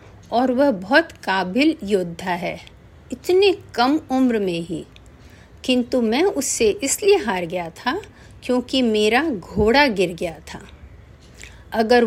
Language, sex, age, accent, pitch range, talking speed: Hindi, female, 50-69, native, 195-260 Hz, 125 wpm